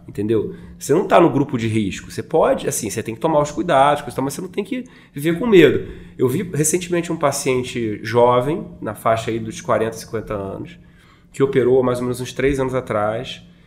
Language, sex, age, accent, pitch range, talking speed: Portuguese, male, 20-39, Brazilian, 125-170 Hz, 205 wpm